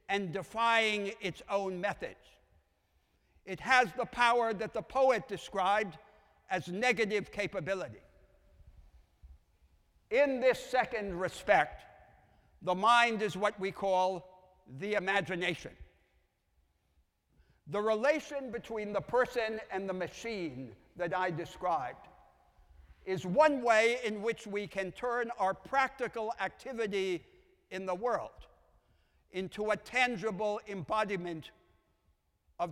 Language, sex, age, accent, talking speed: English, male, 60-79, American, 105 wpm